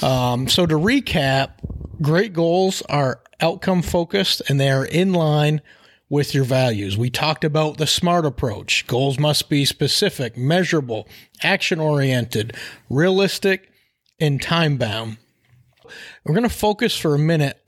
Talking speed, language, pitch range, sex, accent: 140 wpm, English, 130-165 Hz, male, American